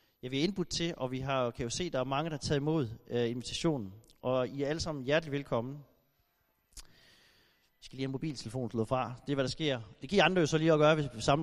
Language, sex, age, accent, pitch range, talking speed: Danish, male, 30-49, native, 125-160 Hz, 250 wpm